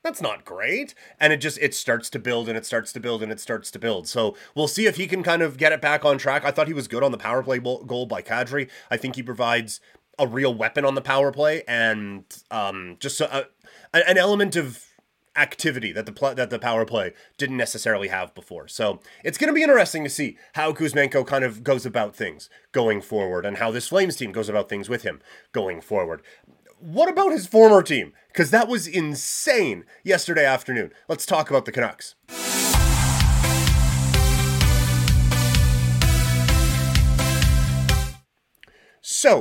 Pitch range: 110-155 Hz